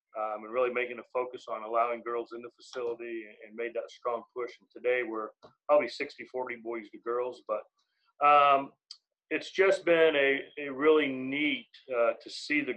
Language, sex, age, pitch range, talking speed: English, male, 40-59, 120-140 Hz, 185 wpm